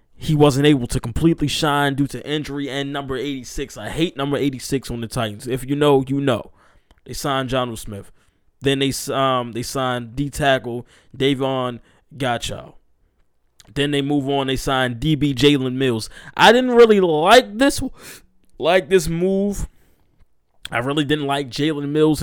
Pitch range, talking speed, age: 125-150 Hz, 175 wpm, 20-39